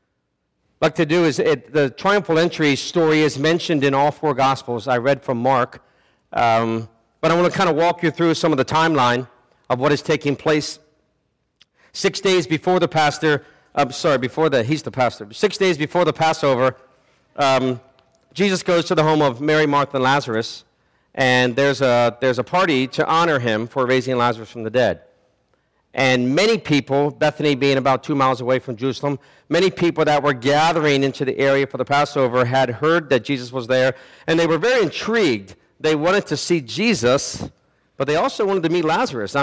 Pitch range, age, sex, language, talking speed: 130-160 Hz, 50-69, male, English, 190 wpm